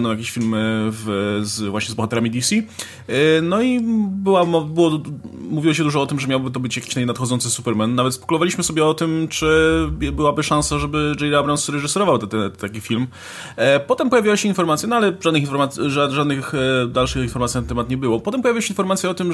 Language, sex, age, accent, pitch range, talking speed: Polish, male, 20-39, native, 125-165 Hz, 190 wpm